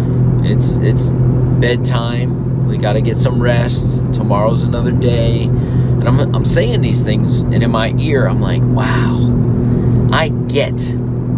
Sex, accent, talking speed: male, American, 140 wpm